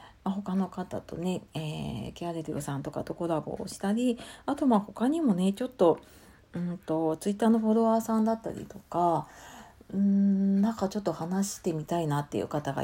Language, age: Japanese, 40-59